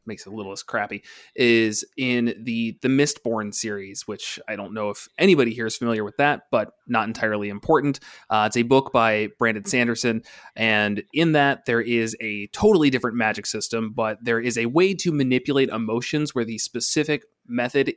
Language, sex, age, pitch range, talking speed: English, male, 20-39, 110-130 Hz, 185 wpm